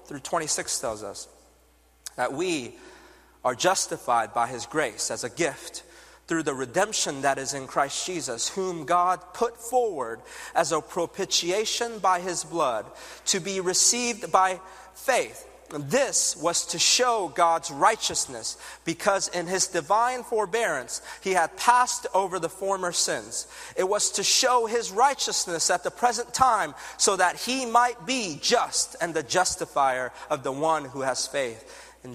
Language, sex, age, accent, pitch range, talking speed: English, male, 40-59, American, 155-235 Hz, 150 wpm